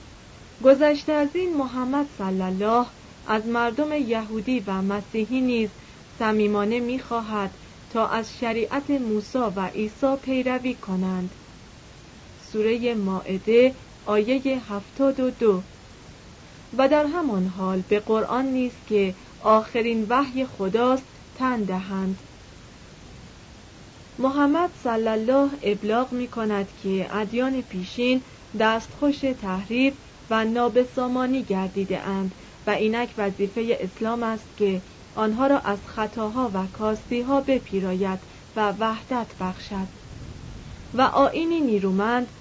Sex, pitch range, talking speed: female, 205-260 Hz, 100 wpm